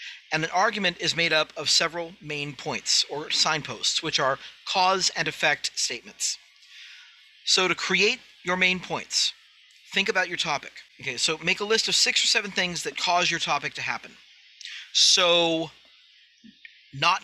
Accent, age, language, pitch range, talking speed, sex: American, 40-59, English, 155-190 Hz, 160 wpm, male